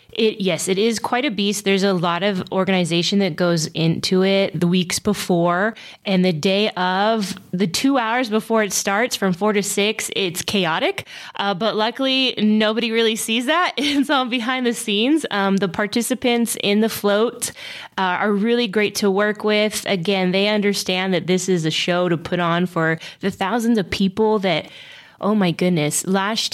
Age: 20-39